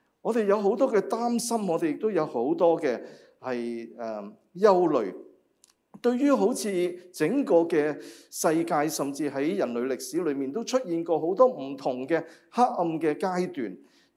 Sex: male